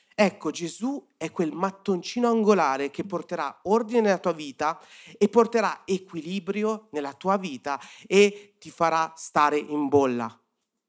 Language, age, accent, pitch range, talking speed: Italian, 40-59, native, 150-200 Hz, 130 wpm